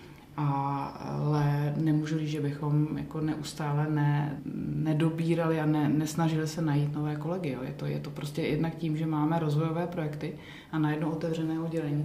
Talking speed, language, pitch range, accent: 170 wpm, Czech, 145-160 Hz, native